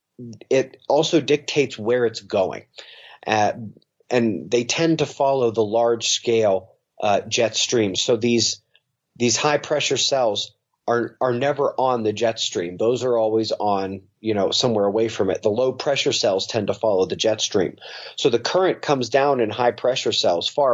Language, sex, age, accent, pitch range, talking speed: English, male, 30-49, American, 115-140 Hz, 165 wpm